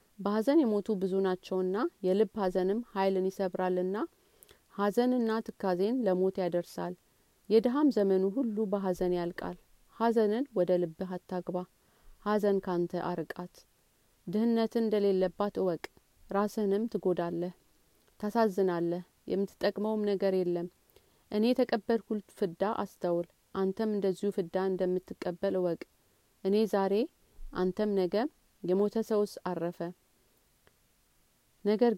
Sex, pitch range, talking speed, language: female, 180-215 Hz, 95 wpm, Amharic